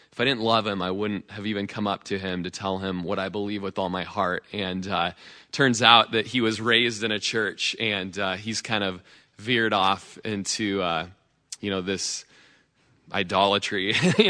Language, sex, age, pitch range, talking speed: English, male, 20-39, 100-125 Hz, 200 wpm